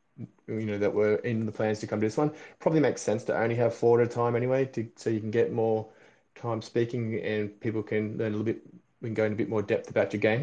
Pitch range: 105-120 Hz